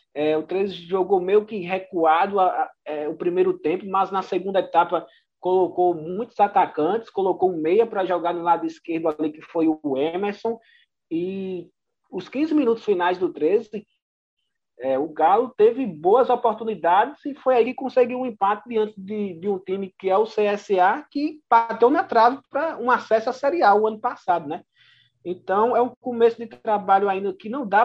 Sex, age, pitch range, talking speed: male, 20-39, 165-230 Hz, 185 wpm